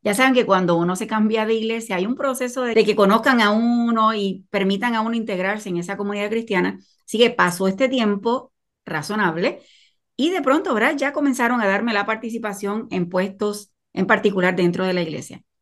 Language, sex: Spanish, female